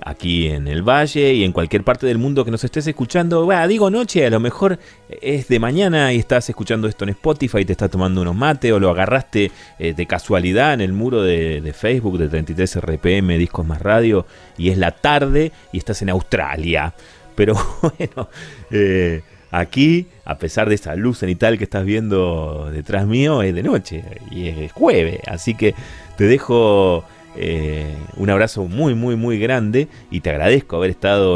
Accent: Argentinian